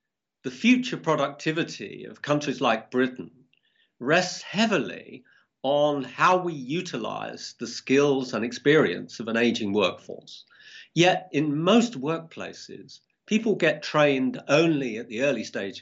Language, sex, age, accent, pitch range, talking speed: English, male, 50-69, British, 125-170 Hz, 125 wpm